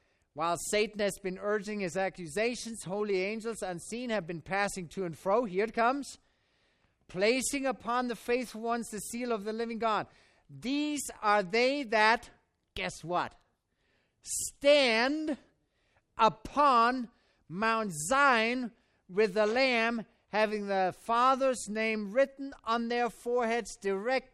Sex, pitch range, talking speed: male, 205-255 Hz, 130 wpm